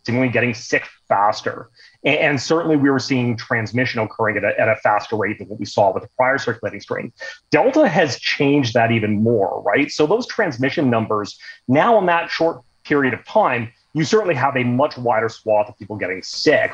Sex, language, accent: male, English, American